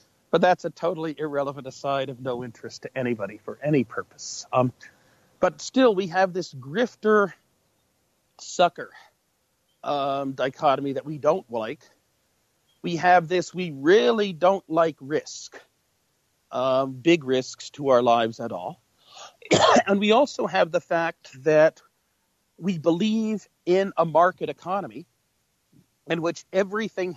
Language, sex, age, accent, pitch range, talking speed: English, male, 50-69, American, 130-180 Hz, 130 wpm